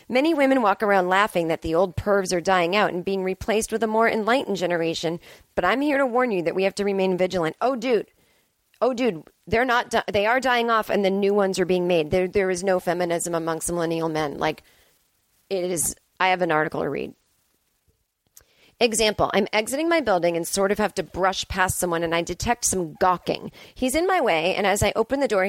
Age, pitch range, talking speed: 30-49, 170-220 Hz, 215 wpm